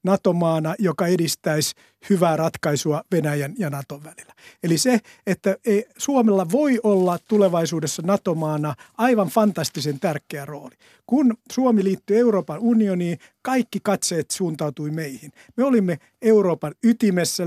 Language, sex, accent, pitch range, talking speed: Finnish, male, native, 160-210 Hz, 115 wpm